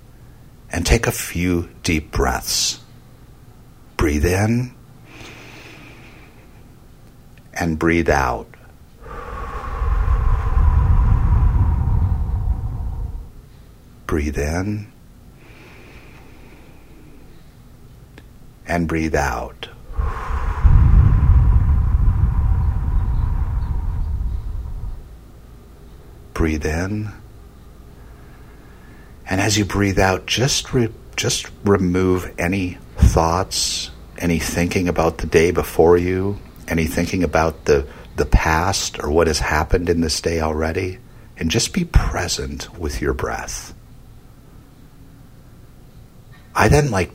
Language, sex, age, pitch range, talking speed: English, male, 60-79, 80-105 Hz, 75 wpm